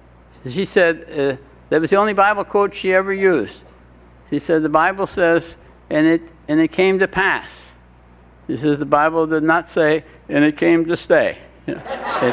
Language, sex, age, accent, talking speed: English, male, 60-79, American, 180 wpm